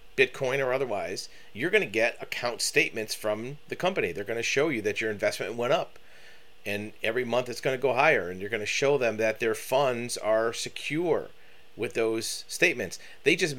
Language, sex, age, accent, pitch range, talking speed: English, male, 30-49, American, 110-135 Hz, 205 wpm